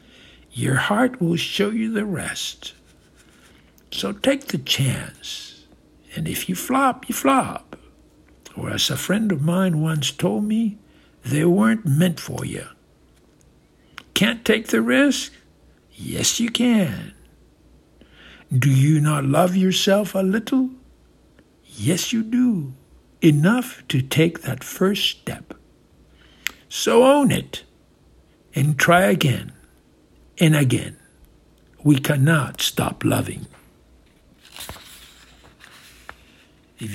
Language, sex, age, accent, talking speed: English, male, 60-79, American, 110 wpm